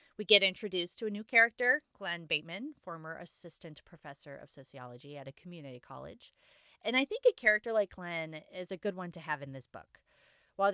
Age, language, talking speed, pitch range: 30-49, English, 195 wpm, 160-215 Hz